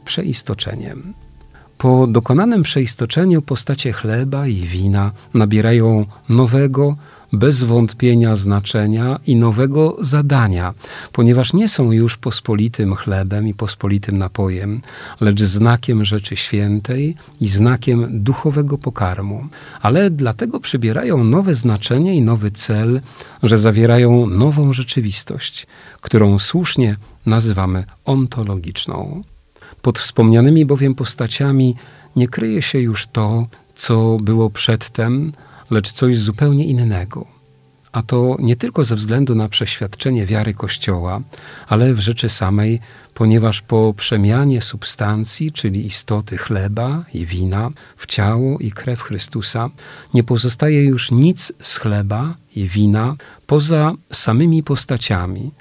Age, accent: 40-59, native